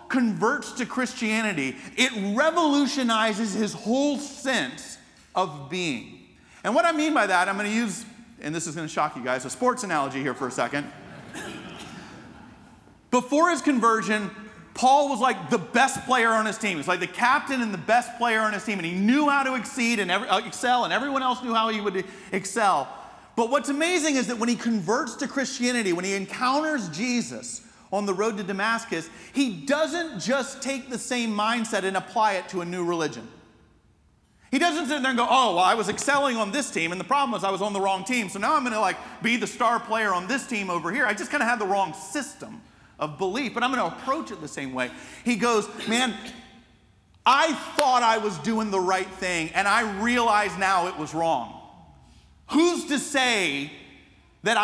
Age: 40-59